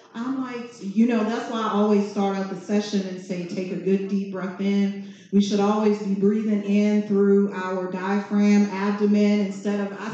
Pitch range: 200-245 Hz